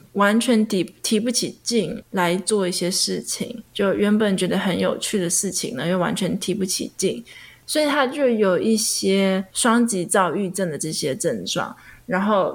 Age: 20-39